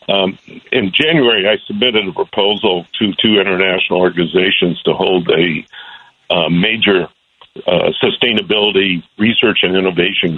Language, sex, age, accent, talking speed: English, male, 60-79, American, 120 wpm